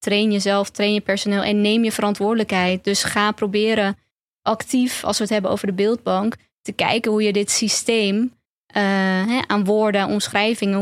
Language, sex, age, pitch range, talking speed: Dutch, female, 20-39, 195-215 Hz, 170 wpm